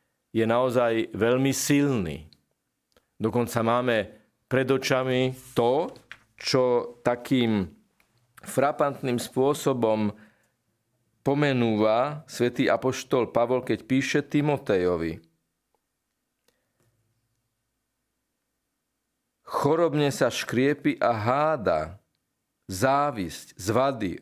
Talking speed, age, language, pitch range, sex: 65 wpm, 50-69, Slovak, 110-130 Hz, male